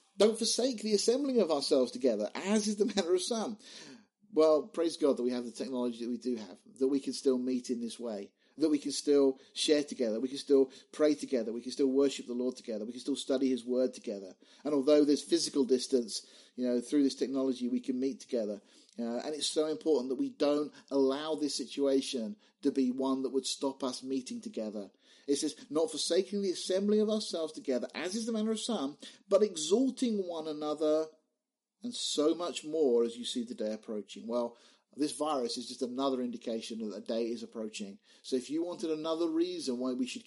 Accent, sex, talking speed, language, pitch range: British, male, 210 wpm, English, 130-210 Hz